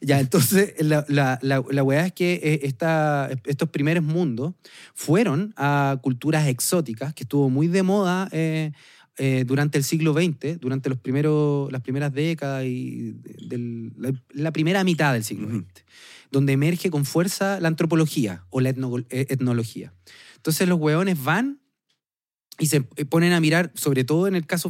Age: 30-49